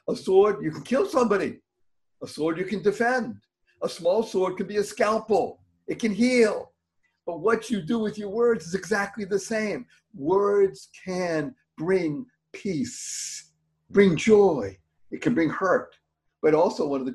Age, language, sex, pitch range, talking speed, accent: 50-69, English, male, 160-220 Hz, 165 wpm, American